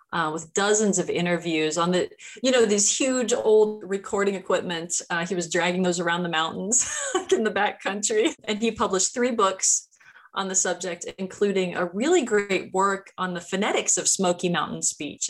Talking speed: 180 wpm